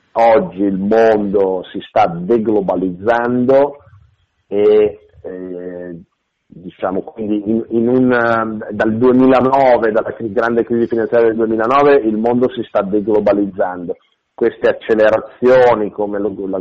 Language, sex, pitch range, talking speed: Italian, male, 100-120 Hz, 115 wpm